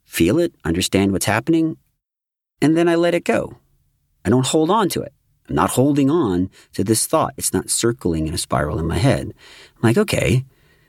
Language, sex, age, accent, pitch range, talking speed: English, male, 40-59, American, 80-115 Hz, 200 wpm